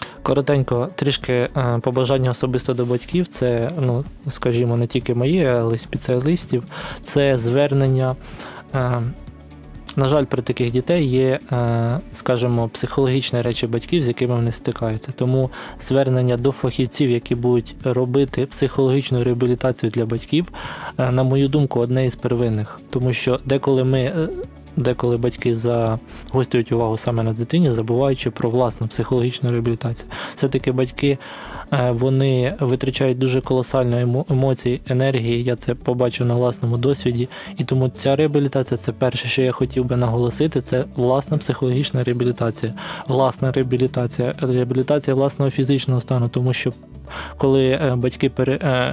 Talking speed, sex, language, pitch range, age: 125 wpm, male, Ukrainian, 120-135 Hz, 20-39